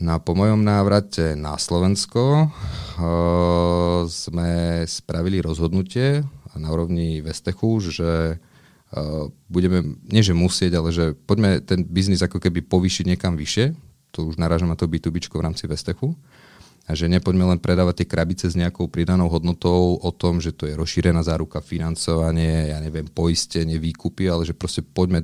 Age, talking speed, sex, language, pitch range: 30-49, 155 wpm, male, Slovak, 80-90 Hz